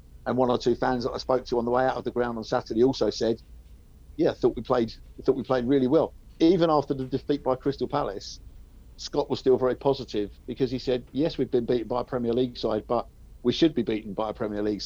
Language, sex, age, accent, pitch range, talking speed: English, male, 50-69, British, 115-140 Hz, 245 wpm